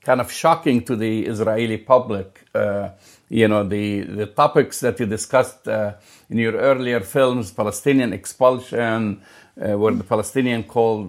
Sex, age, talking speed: male, 50-69, 150 wpm